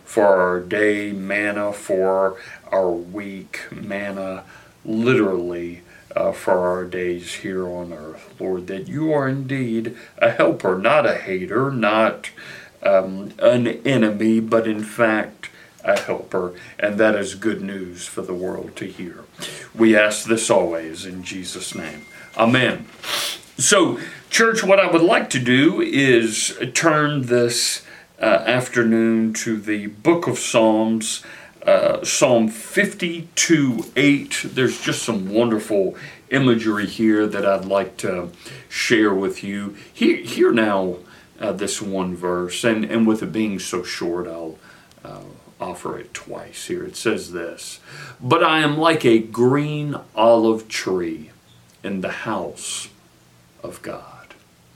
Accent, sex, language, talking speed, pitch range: American, male, English, 135 wpm, 95-120 Hz